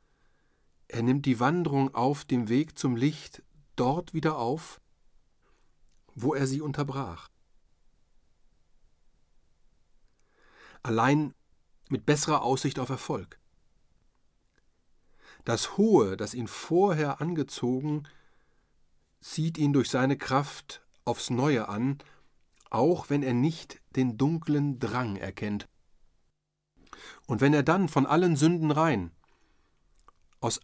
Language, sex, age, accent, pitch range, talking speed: German, male, 40-59, German, 105-155 Hz, 105 wpm